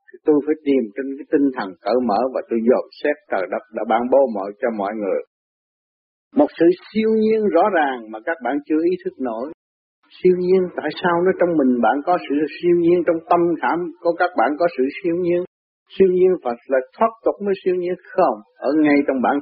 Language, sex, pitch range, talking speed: Vietnamese, male, 140-185 Hz, 220 wpm